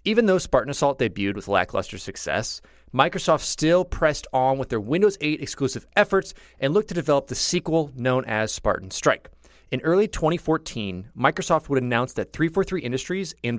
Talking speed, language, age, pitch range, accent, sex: 170 wpm, English, 30-49, 115-160 Hz, American, male